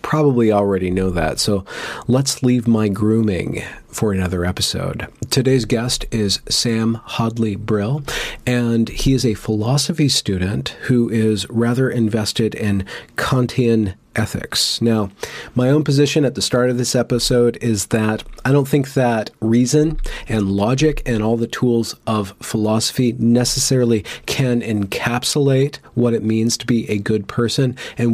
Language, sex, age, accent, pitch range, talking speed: English, male, 40-59, American, 110-130 Hz, 145 wpm